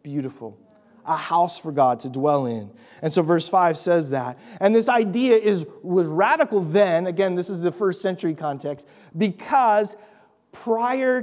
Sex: male